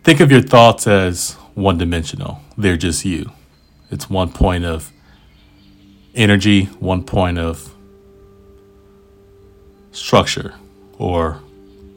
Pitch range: 85-100 Hz